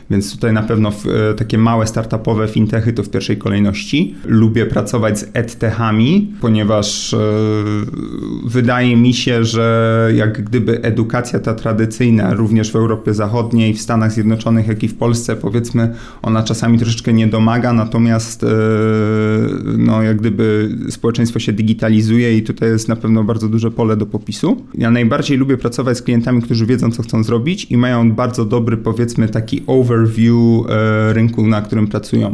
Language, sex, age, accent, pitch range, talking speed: Polish, male, 30-49, native, 110-120 Hz, 165 wpm